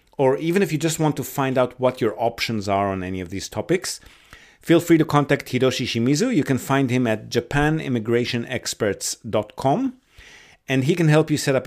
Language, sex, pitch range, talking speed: English, male, 115-150 Hz, 190 wpm